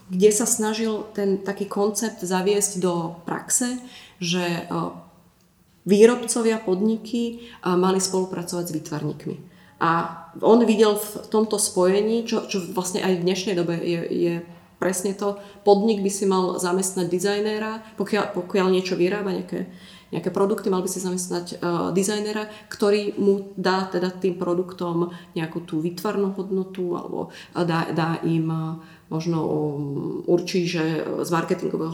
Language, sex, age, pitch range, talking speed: Slovak, female, 30-49, 170-195 Hz, 135 wpm